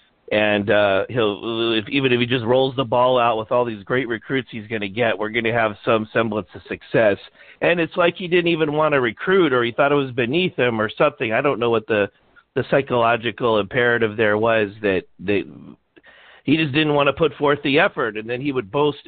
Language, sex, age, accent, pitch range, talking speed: English, male, 50-69, American, 115-145 Hz, 230 wpm